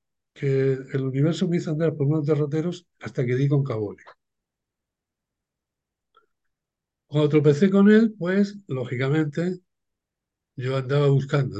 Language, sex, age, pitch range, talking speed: Spanish, male, 60-79, 125-155 Hz, 120 wpm